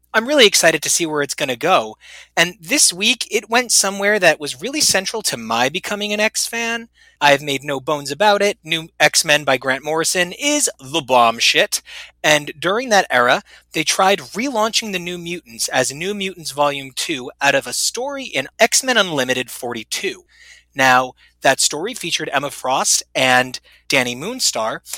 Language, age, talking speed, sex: English, 30-49, 175 wpm, male